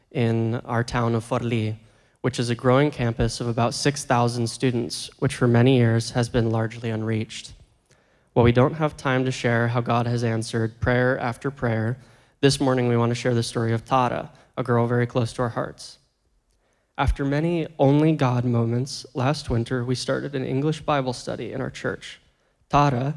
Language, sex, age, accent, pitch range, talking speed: English, male, 20-39, American, 120-140 Hz, 180 wpm